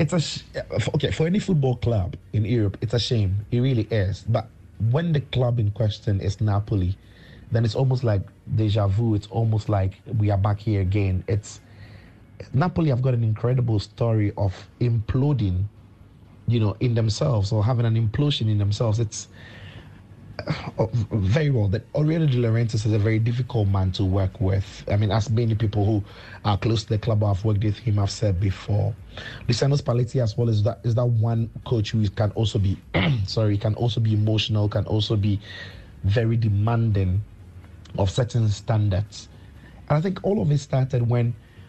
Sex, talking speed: male, 185 wpm